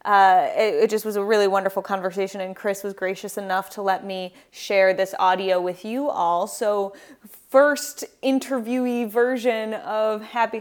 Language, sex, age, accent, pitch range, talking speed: English, female, 20-39, American, 195-230 Hz, 165 wpm